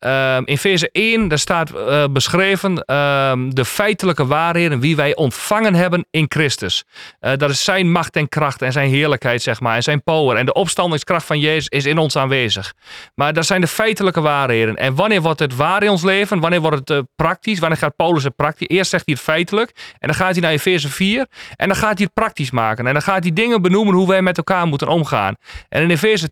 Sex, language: male, Dutch